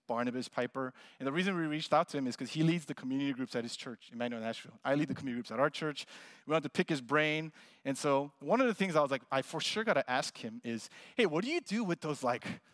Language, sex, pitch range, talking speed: English, male, 140-185 Hz, 285 wpm